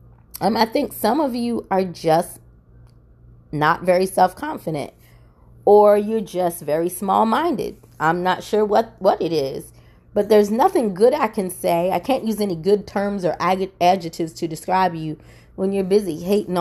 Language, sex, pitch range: English, female, 170-260 Hz